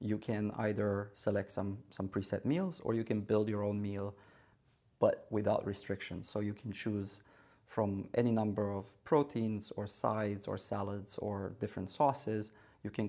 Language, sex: English, male